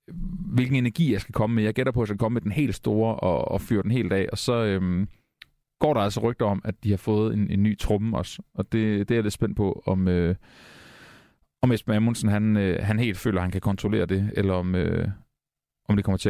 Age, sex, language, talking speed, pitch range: 30-49, male, Danish, 255 wpm, 100-120 Hz